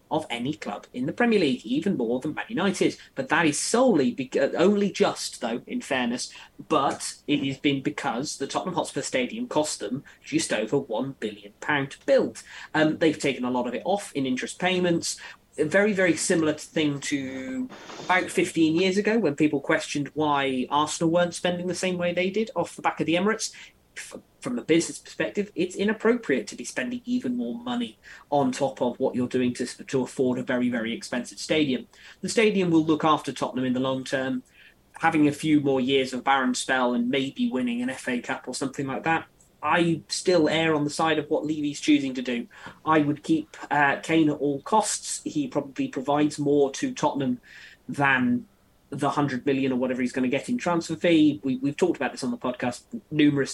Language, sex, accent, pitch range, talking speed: English, male, British, 135-180 Hz, 200 wpm